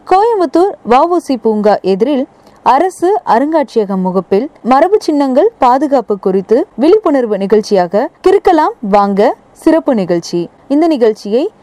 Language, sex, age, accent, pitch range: Tamil, female, 20-39, native, 210-310 Hz